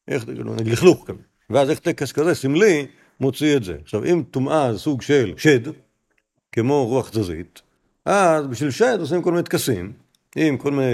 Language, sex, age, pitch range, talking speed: Hebrew, male, 50-69, 100-130 Hz, 165 wpm